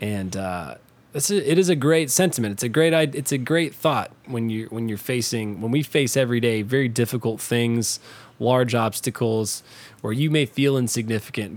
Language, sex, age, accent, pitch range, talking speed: English, male, 20-39, American, 110-135 Hz, 185 wpm